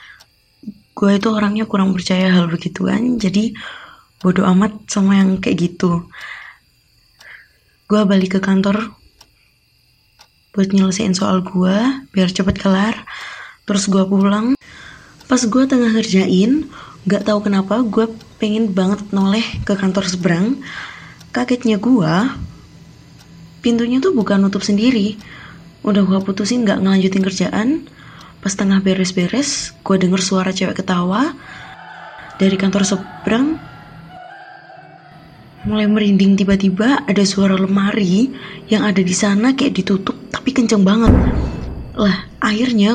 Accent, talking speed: native, 115 wpm